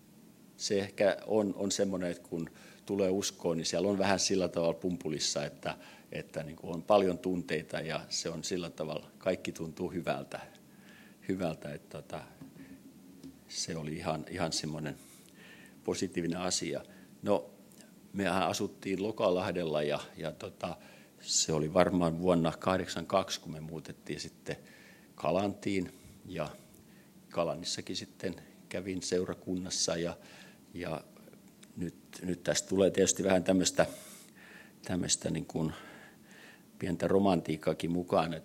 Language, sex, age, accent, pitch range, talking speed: Finnish, male, 50-69, native, 80-95 Hz, 120 wpm